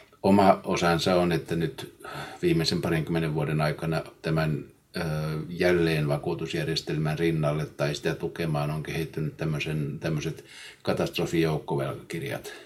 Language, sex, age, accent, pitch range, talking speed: Finnish, male, 50-69, native, 75-85 Hz, 90 wpm